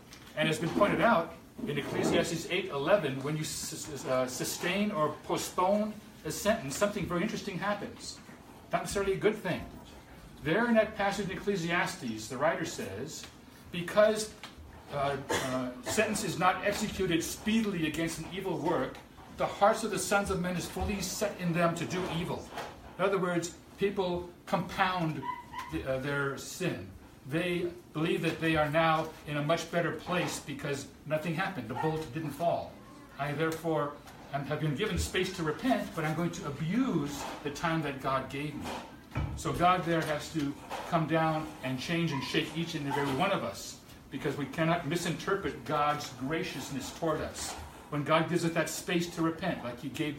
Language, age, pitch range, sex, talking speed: English, 60-79, 145-185 Hz, male, 170 wpm